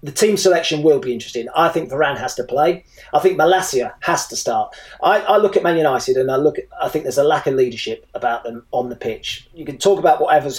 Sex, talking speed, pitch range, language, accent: male, 255 wpm, 135-195 Hz, English, British